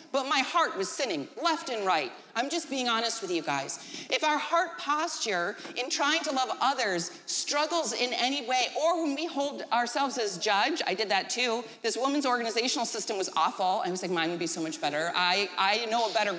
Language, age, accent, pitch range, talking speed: English, 40-59, American, 210-305 Hz, 215 wpm